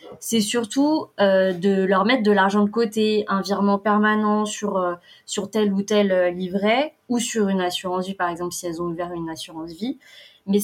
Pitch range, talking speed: 185-225 Hz, 205 wpm